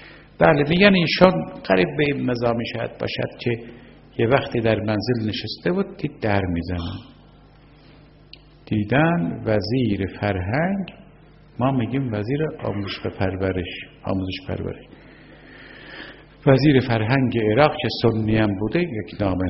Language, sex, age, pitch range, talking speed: Persian, male, 50-69, 100-140 Hz, 120 wpm